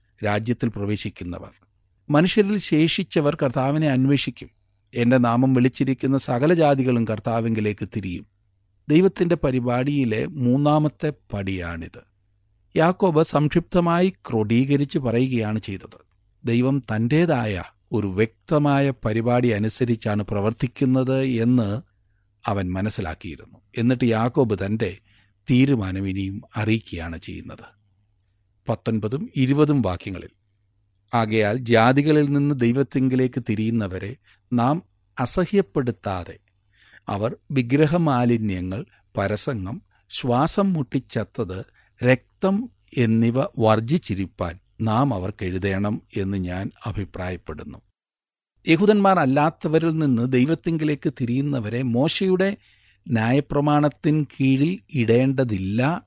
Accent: native